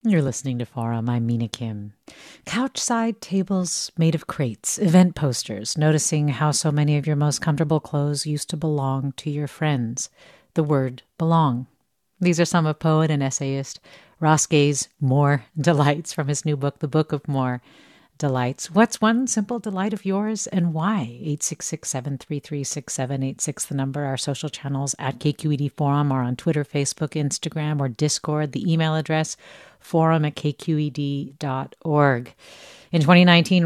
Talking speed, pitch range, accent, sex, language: 150 wpm, 140-170 Hz, American, female, English